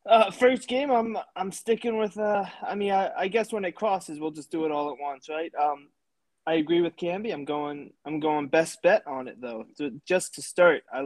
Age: 20-39